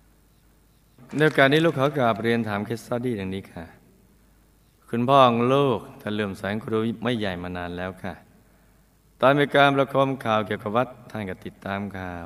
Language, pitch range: Thai, 95-125 Hz